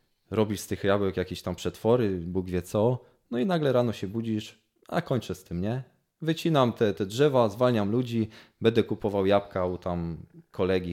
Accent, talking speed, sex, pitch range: native, 180 wpm, male, 95-120 Hz